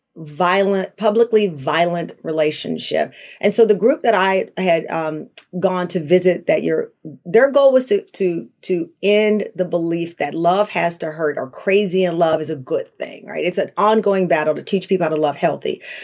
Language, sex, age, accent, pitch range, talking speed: English, female, 40-59, American, 160-195 Hz, 190 wpm